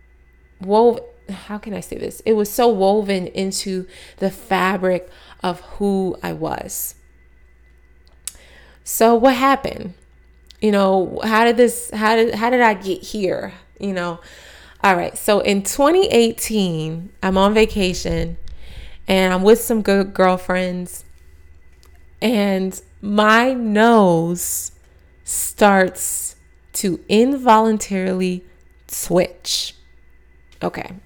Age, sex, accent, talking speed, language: 20-39, female, American, 110 wpm, English